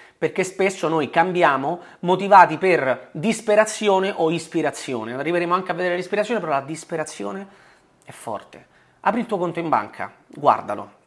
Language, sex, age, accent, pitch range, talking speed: Italian, male, 30-49, native, 135-185 Hz, 140 wpm